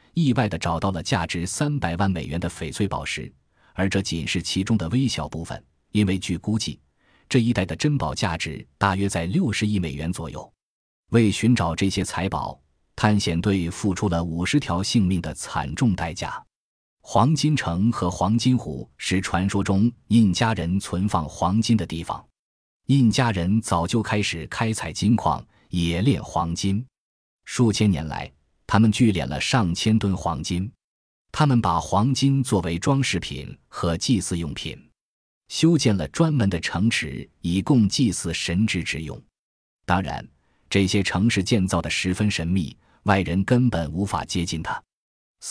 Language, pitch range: Chinese, 85-115 Hz